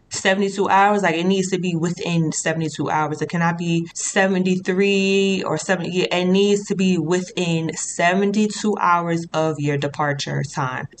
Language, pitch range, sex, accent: English, 180-240 Hz, female, American